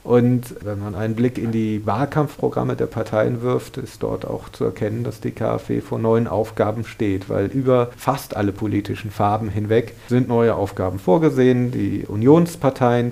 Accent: German